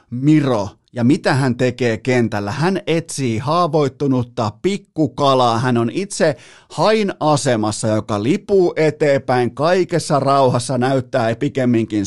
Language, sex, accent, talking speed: Finnish, male, native, 105 wpm